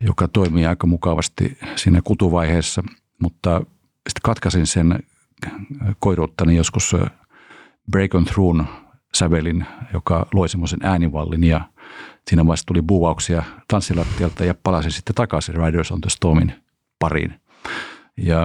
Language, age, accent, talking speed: English, 50-69, Finnish, 115 wpm